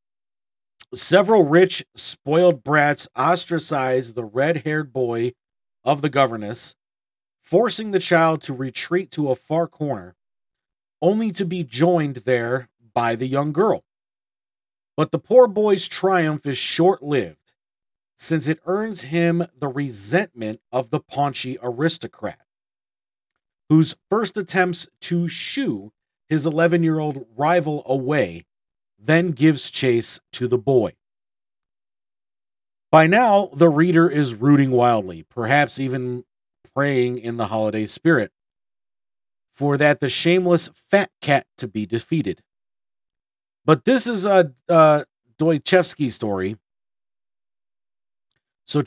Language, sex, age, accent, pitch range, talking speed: English, male, 40-59, American, 125-170 Hz, 115 wpm